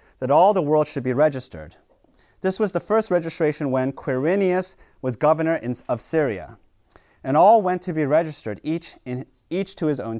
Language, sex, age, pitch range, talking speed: English, male, 30-49, 125-185 Hz, 170 wpm